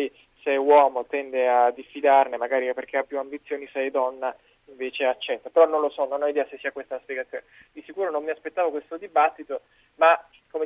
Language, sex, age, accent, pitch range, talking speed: Italian, male, 20-39, native, 135-155 Hz, 205 wpm